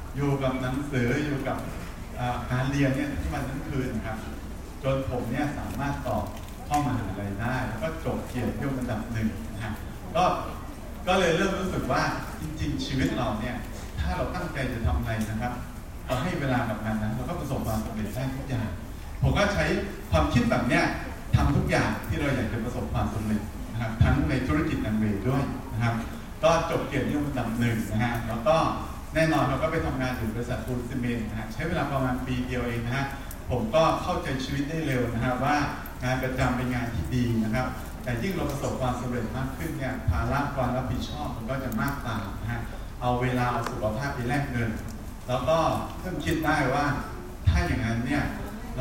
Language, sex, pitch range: Thai, male, 110-130 Hz